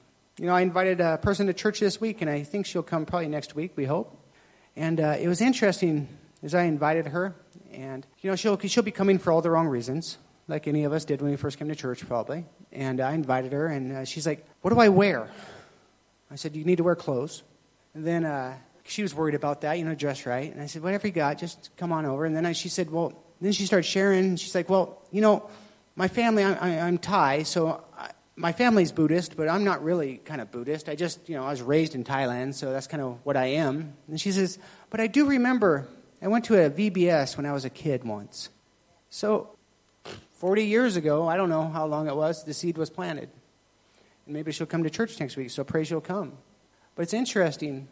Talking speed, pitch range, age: 240 wpm, 150-185 Hz, 40-59